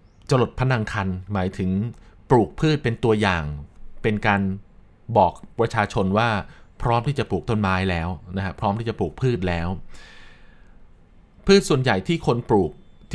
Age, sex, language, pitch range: 20-39, male, Thai, 90-125 Hz